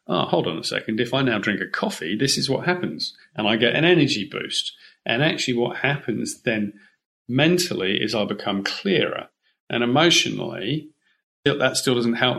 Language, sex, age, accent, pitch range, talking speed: English, male, 40-59, British, 110-135 Hz, 180 wpm